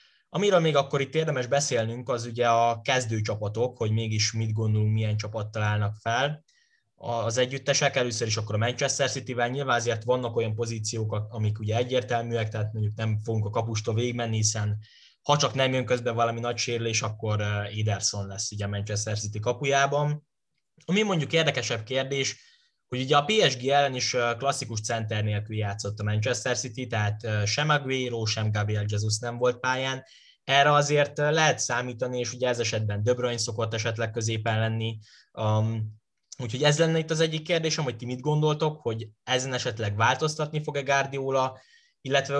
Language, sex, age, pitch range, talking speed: Hungarian, male, 10-29, 110-135 Hz, 165 wpm